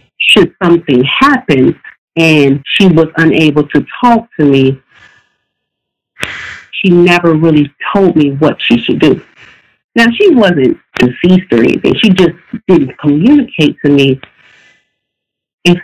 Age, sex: 50-69, female